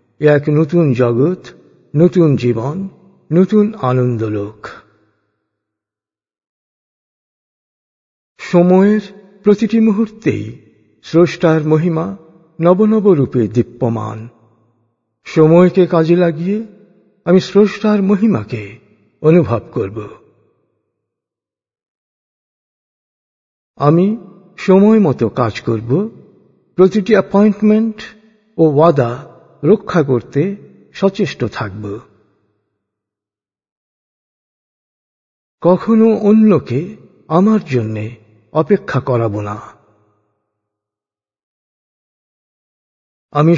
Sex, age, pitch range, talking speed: male, 50-69, 110-190 Hz, 60 wpm